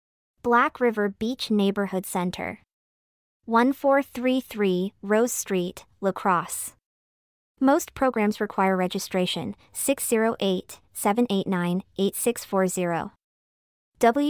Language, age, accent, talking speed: English, 30-49, American, 65 wpm